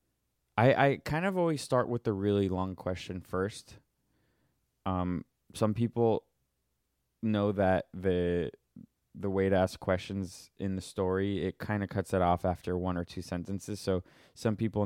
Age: 20-39